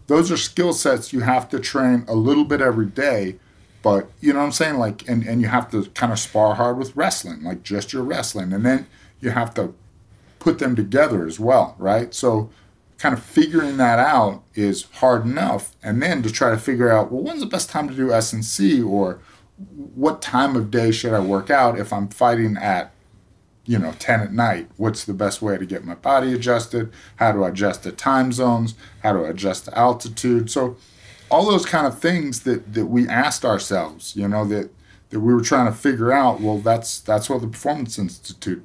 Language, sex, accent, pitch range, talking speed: English, male, American, 105-125 Hz, 215 wpm